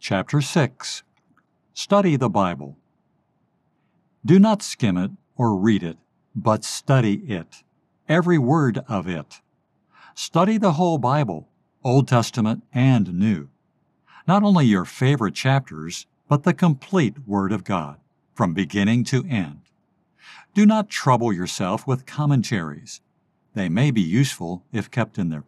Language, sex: English, male